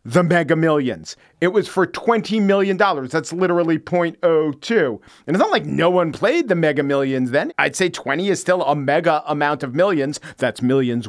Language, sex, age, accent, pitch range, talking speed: English, male, 40-59, American, 140-200 Hz, 185 wpm